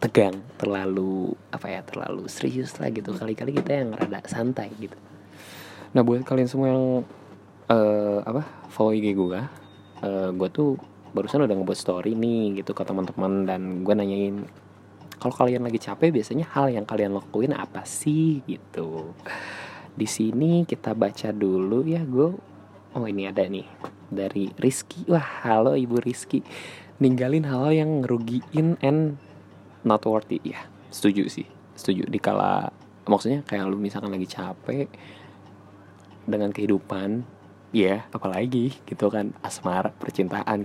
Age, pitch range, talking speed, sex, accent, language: 20-39, 100-125 Hz, 140 wpm, male, native, Indonesian